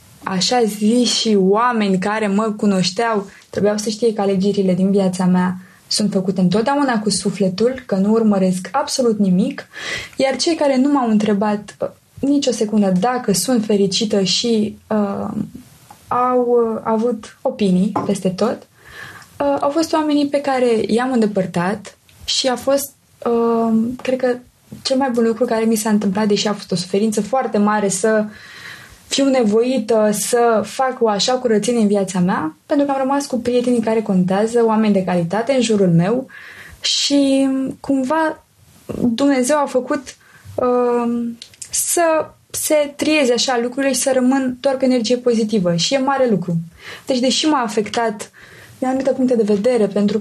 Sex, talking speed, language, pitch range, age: female, 155 wpm, Romanian, 205-260 Hz, 20-39